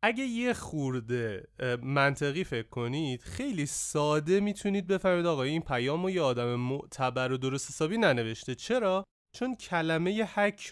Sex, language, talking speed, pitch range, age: male, Persian, 140 wpm, 135-180 Hz, 30-49